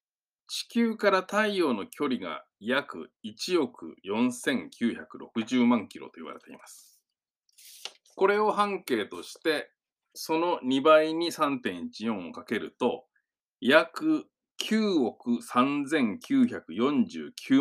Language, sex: Japanese, male